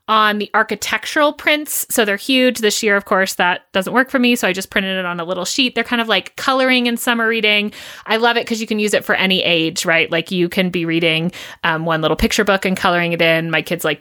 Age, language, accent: 30-49, English, American